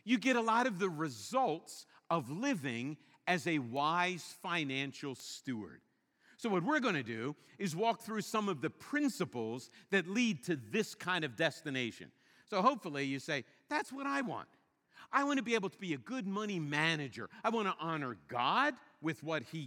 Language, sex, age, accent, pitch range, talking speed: English, male, 50-69, American, 145-225 Hz, 185 wpm